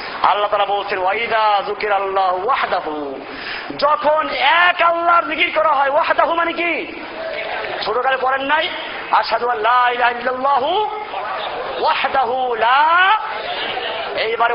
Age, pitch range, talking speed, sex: 40-59, 220-295 Hz, 115 wpm, male